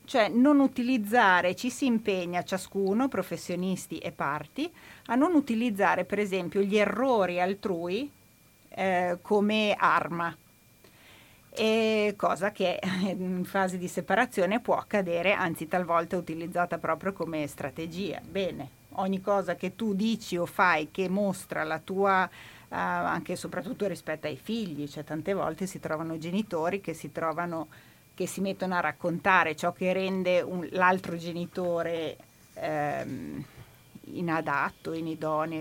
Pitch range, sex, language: 170-205 Hz, female, Italian